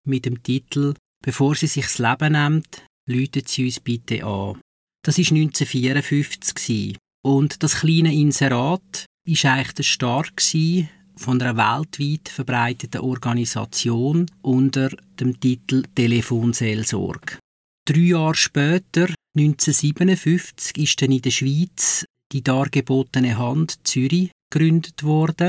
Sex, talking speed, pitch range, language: male, 110 wpm, 125-155 Hz, English